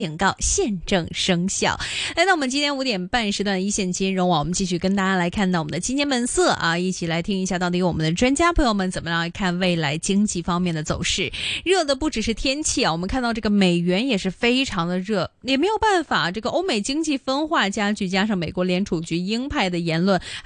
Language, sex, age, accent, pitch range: Chinese, female, 20-39, native, 180-255 Hz